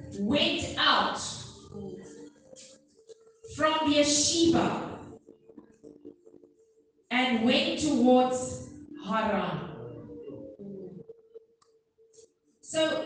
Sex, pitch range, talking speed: female, 235-325 Hz, 45 wpm